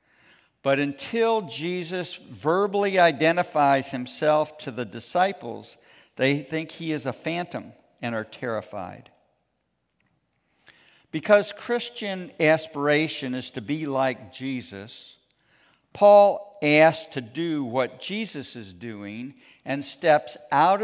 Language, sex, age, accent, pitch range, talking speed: English, male, 60-79, American, 130-170 Hz, 105 wpm